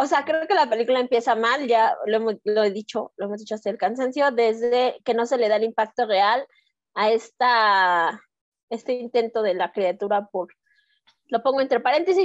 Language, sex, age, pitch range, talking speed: Spanish, female, 20-39, 215-275 Hz, 190 wpm